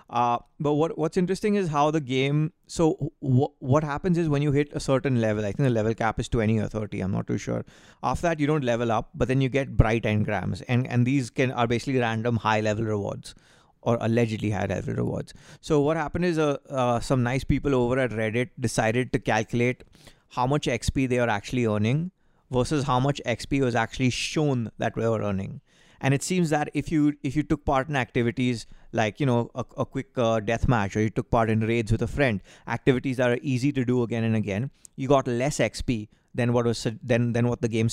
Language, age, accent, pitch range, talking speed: English, 30-49, Indian, 115-140 Hz, 225 wpm